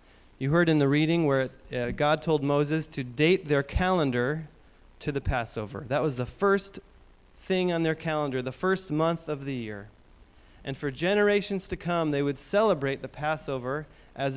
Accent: American